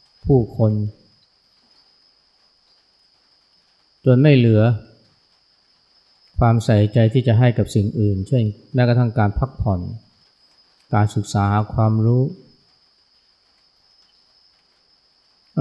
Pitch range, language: 105-120 Hz, Thai